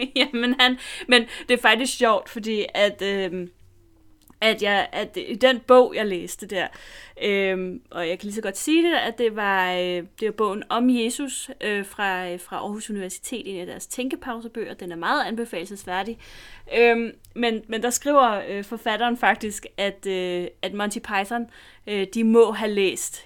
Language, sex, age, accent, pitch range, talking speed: Danish, female, 30-49, native, 185-230 Hz, 175 wpm